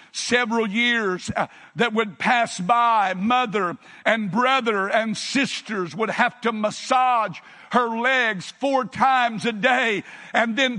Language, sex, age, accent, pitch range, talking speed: English, male, 60-79, American, 225-265 Hz, 135 wpm